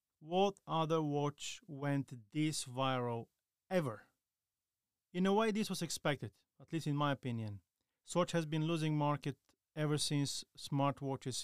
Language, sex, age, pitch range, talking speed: English, male, 30-49, 125-155 Hz, 135 wpm